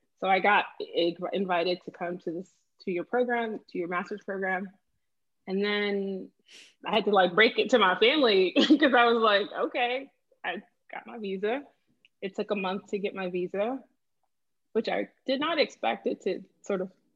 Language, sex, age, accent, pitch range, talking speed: English, female, 20-39, American, 180-235 Hz, 180 wpm